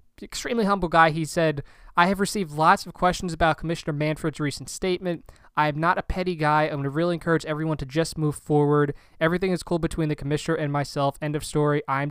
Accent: American